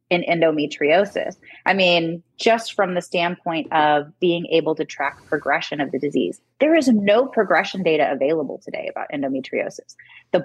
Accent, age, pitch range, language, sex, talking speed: American, 30-49, 155-205 Hz, English, female, 155 wpm